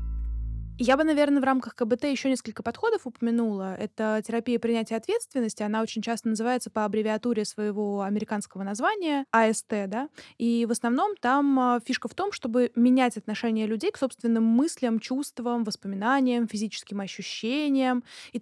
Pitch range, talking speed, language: 210-250 Hz, 145 wpm, Russian